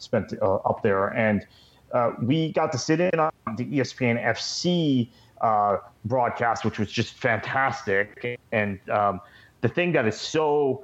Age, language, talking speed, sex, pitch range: 30-49, English, 155 wpm, male, 110-140 Hz